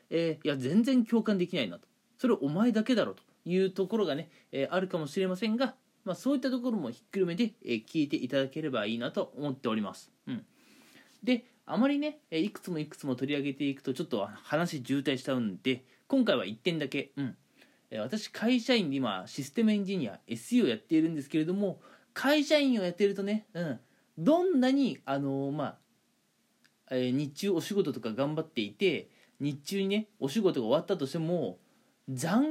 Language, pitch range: Japanese, 140-230 Hz